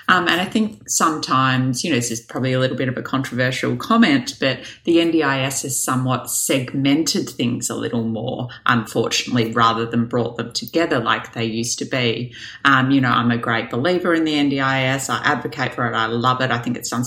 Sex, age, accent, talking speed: female, 30-49, Australian, 205 wpm